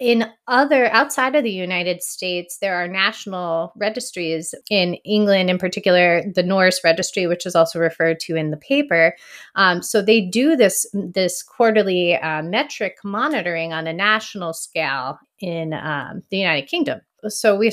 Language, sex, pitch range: English, female, 170-215 Hz